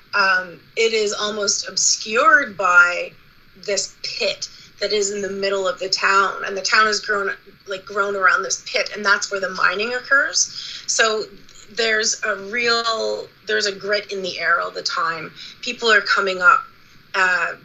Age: 30-49